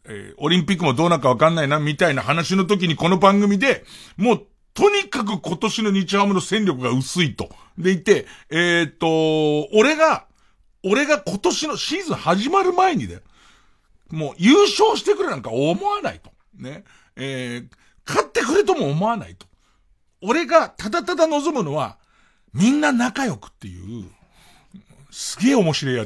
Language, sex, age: Japanese, male, 50-69